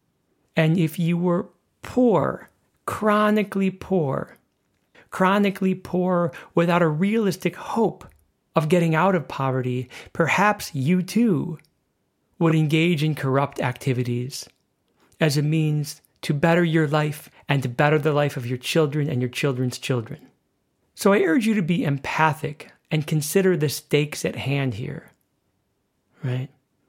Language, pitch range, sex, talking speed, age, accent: English, 130-165 Hz, male, 135 wpm, 40-59, American